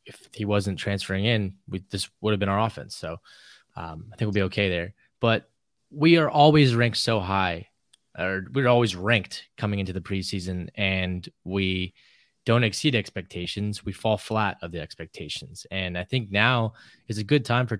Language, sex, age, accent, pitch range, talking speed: English, male, 20-39, American, 95-110 Hz, 185 wpm